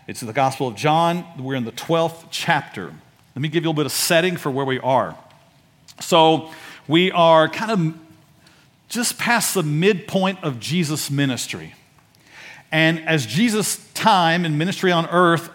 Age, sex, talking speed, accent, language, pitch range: 50-69, male, 170 wpm, American, English, 165-235 Hz